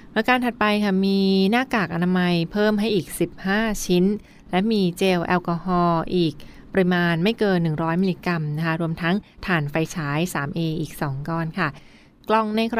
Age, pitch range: 20-39, 170-200 Hz